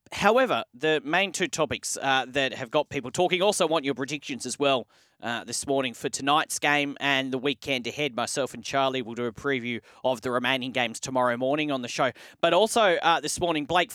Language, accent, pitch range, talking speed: English, Australian, 145-195 Hz, 210 wpm